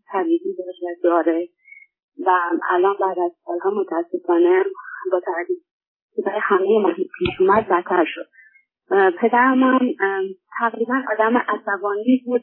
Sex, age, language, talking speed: female, 30-49, Persian, 105 wpm